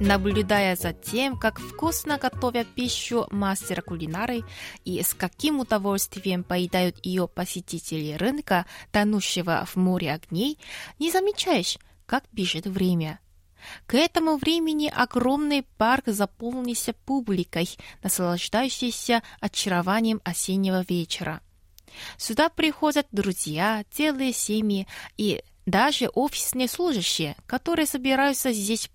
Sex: female